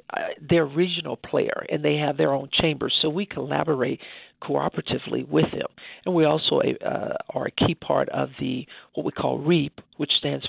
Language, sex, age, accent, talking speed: English, male, 50-69, American, 190 wpm